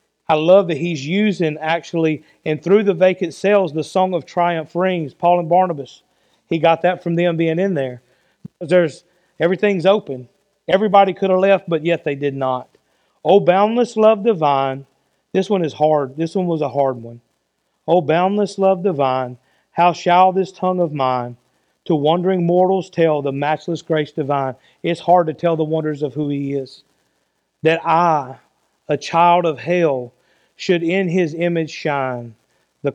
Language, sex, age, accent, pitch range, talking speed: English, male, 40-59, American, 140-180 Hz, 170 wpm